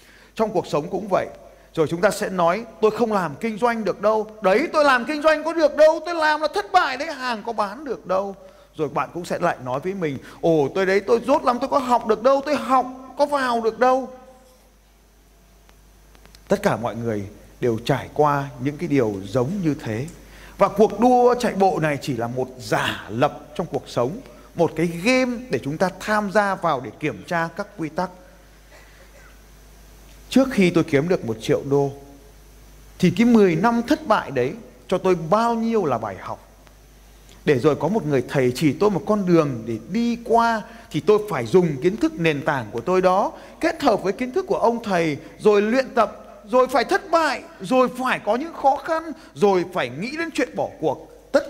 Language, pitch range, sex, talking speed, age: Vietnamese, 150-235 Hz, male, 210 wpm, 30-49